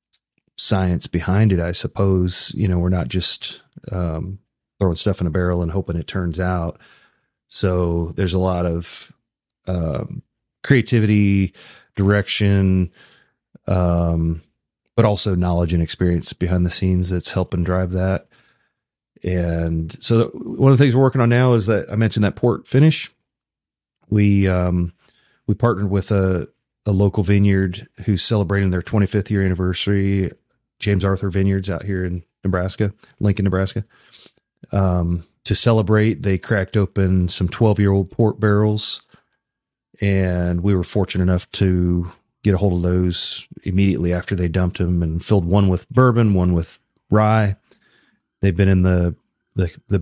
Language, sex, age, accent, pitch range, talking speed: English, male, 30-49, American, 90-105 Hz, 150 wpm